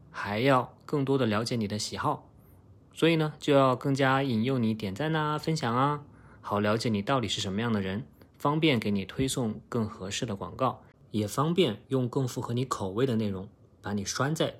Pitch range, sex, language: 110-135 Hz, male, Chinese